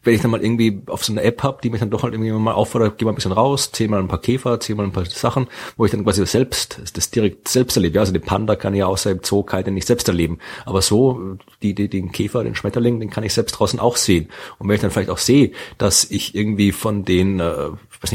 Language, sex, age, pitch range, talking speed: German, male, 30-49, 95-110 Hz, 280 wpm